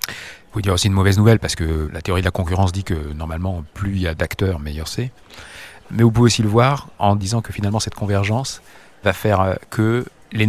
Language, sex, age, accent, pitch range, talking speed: French, male, 40-59, French, 95-115 Hz, 230 wpm